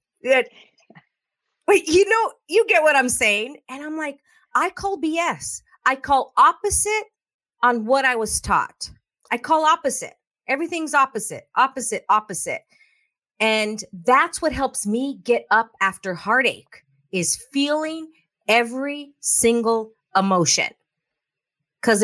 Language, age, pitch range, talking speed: English, 40-59, 200-300 Hz, 125 wpm